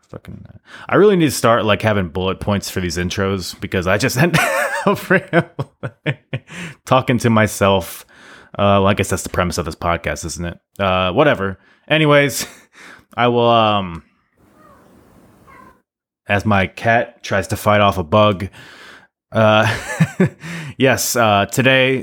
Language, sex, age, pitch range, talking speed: English, male, 20-39, 100-125 Hz, 140 wpm